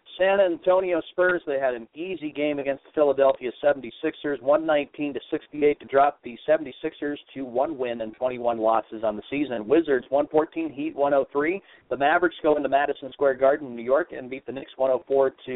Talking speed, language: 180 wpm, English